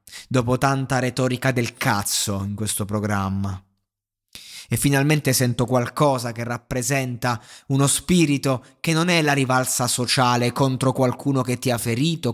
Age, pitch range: 20-39, 110-130 Hz